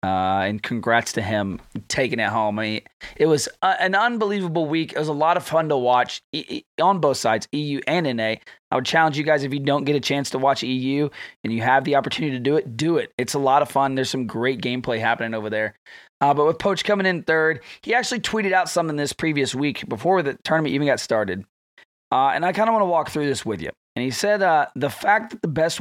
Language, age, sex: English, 20-39, male